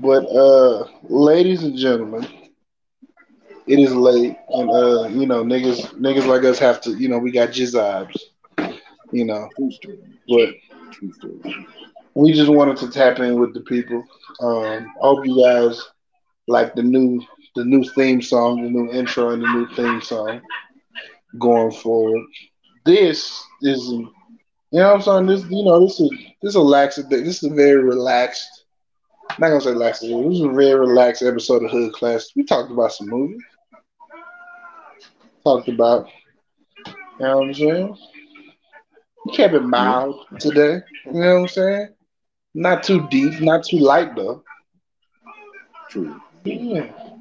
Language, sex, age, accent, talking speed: English, male, 20-39, American, 160 wpm